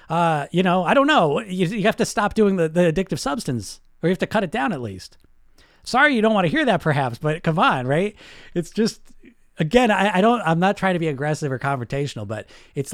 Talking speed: 245 wpm